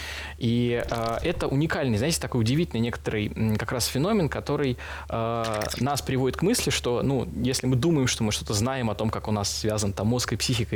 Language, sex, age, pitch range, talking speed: Russian, male, 20-39, 110-130 Hz, 205 wpm